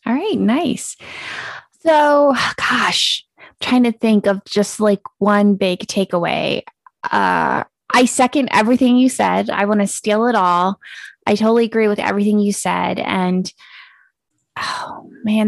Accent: American